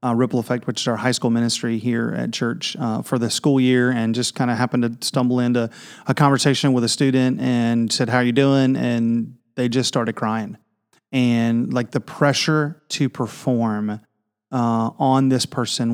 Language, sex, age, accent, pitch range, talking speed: English, male, 30-49, American, 120-140 Hz, 190 wpm